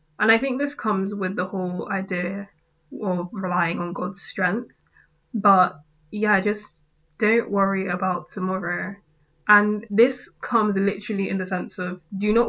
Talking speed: 150 wpm